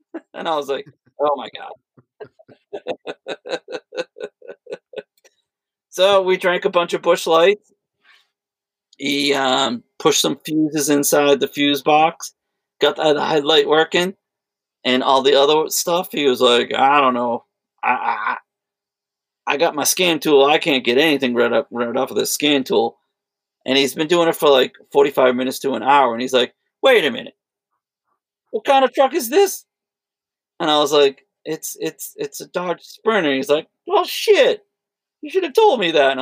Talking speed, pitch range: 170 wpm, 140-220 Hz